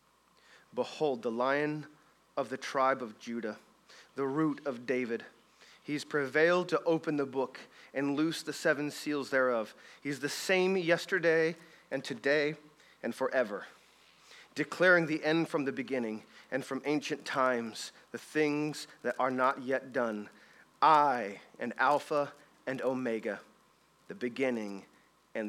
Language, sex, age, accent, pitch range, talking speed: English, male, 40-59, American, 130-150 Hz, 135 wpm